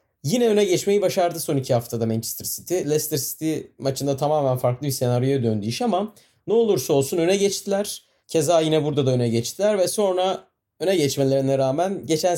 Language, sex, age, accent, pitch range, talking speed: Turkish, male, 30-49, native, 140-175 Hz, 175 wpm